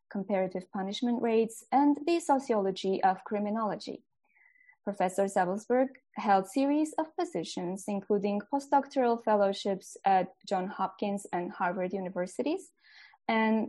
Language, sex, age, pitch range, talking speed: English, female, 20-39, 190-265 Hz, 110 wpm